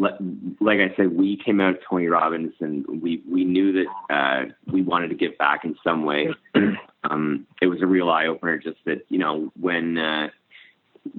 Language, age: English, 30-49